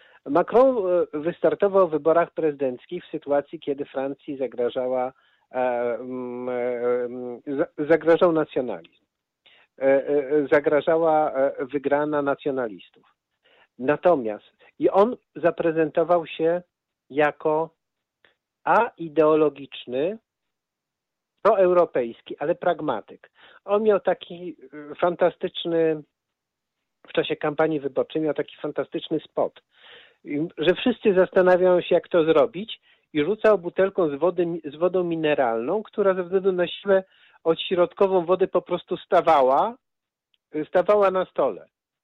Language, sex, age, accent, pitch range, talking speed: Polish, male, 50-69, native, 150-185 Hz, 90 wpm